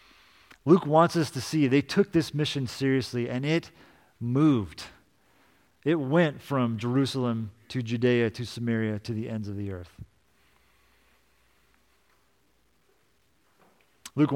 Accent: American